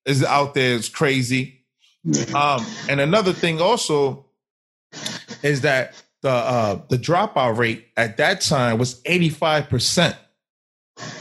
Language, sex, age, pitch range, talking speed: English, male, 20-39, 135-170 Hz, 120 wpm